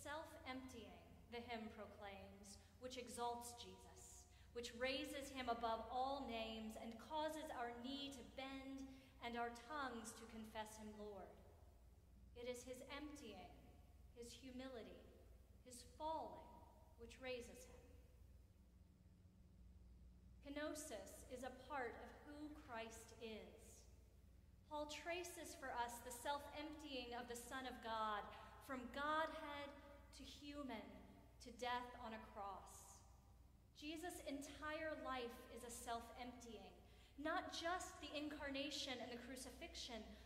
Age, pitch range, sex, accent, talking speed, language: 30-49, 210-275 Hz, female, American, 115 wpm, English